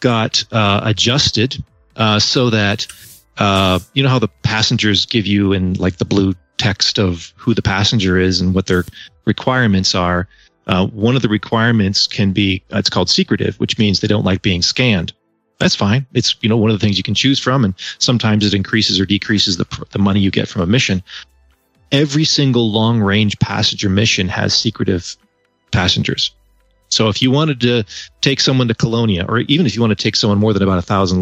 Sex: male